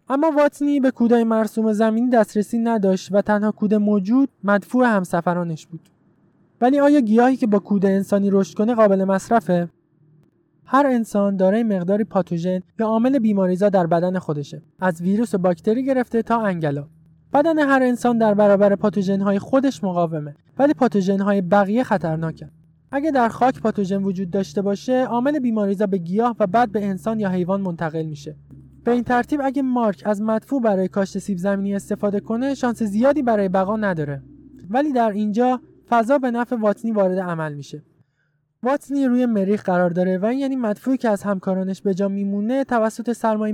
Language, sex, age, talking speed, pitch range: Persian, male, 20-39, 165 wpm, 185-240 Hz